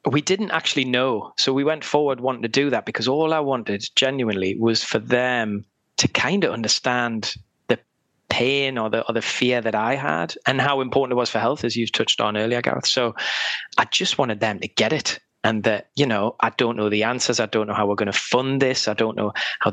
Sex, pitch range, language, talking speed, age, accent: male, 110-130 Hz, English, 235 wpm, 20-39, British